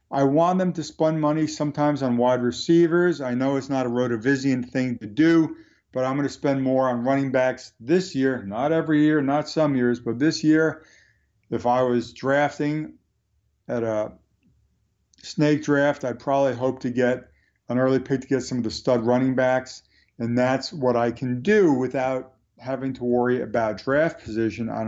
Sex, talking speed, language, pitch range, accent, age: male, 185 wpm, English, 125-150 Hz, American, 50-69